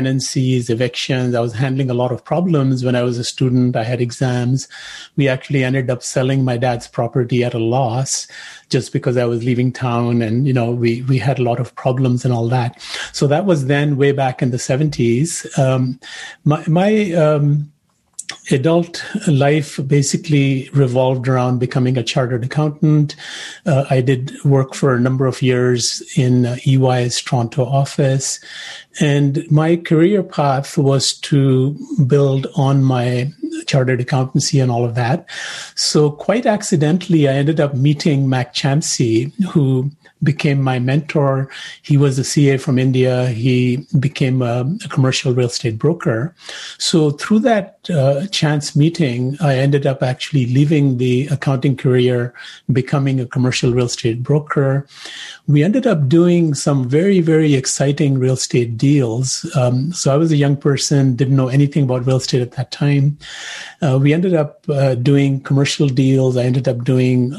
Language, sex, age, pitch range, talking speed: English, male, 30-49, 125-150 Hz, 160 wpm